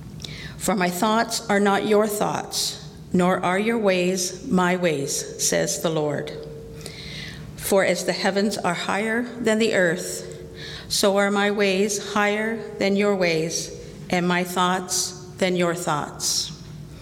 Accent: American